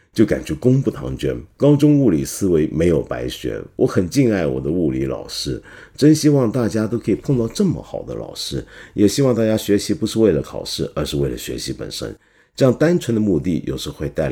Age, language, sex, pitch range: 50-69, Chinese, male, 100-140 Hz